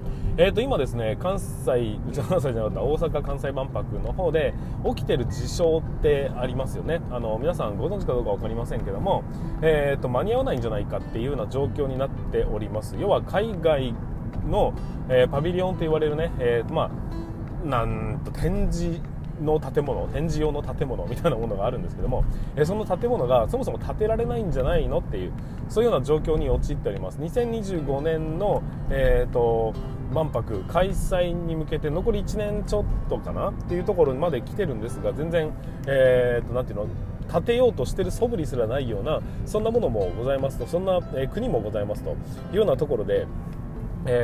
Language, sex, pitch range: Japanese, male, 125-160 Hz